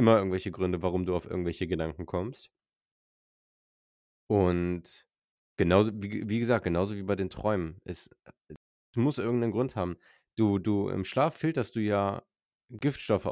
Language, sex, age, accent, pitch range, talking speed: German, male, 20-39, German, 85-110 Hz, 145 wpm